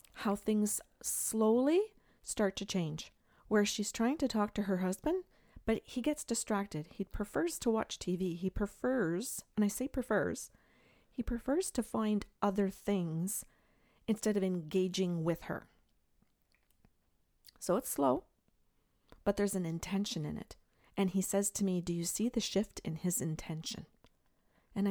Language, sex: English, female